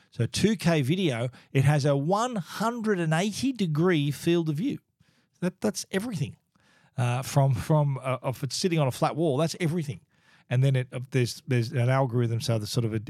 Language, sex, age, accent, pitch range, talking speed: English, male, 40-59, Australian, 120-155 Hz, 185 wpm